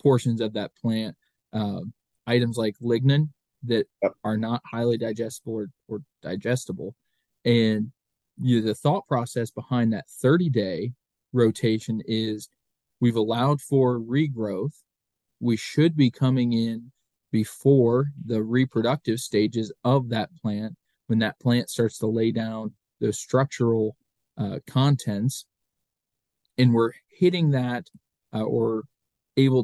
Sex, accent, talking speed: male, American, 120 wpm